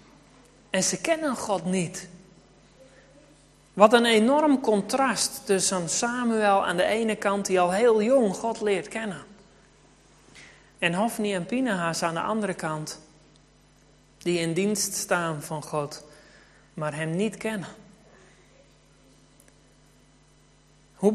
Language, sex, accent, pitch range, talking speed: Dutch, male, Dutch, 155-205 Hz, 115 wpm